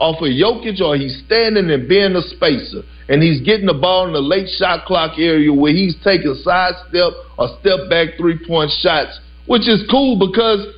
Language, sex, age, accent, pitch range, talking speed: English, male, 50-69, American, 165-230 Hz, 195 wpm